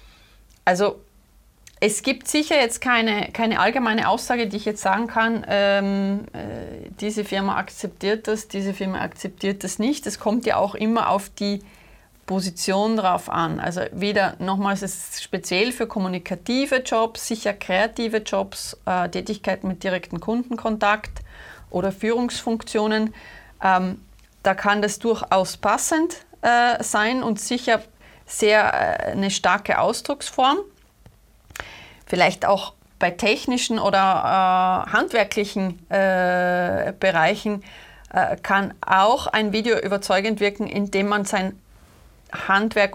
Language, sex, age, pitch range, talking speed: German, female, 30-49, 190-225 Hz, 120 wpm